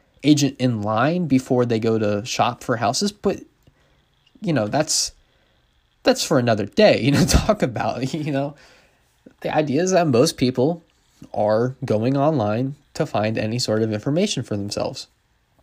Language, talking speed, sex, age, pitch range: English, 155 wpm, male, 20-39, 115-170 Hz